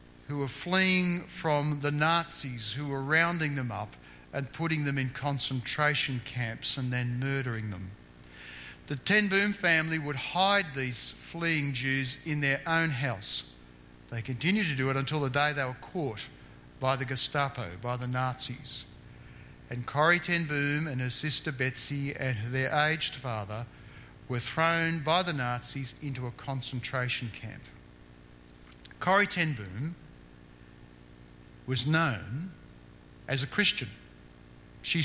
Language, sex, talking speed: English, male, 140 wpm